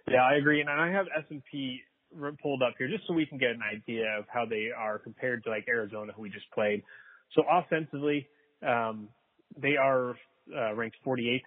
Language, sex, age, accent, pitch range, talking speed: English, male, 30-49, American, 110-135 Hz, 195 wpm